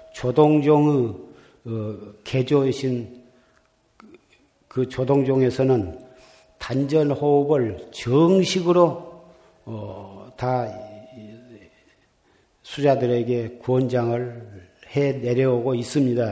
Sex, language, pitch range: male, Korean, 120-150 Hz